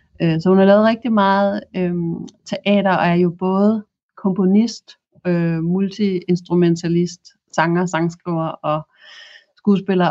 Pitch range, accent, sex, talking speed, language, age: 165-200 Hz, native, female, 120 wpm, Danish, 30-49